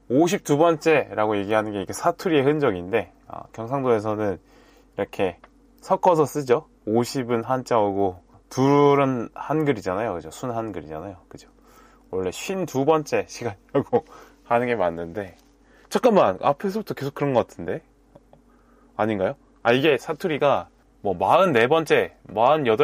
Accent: native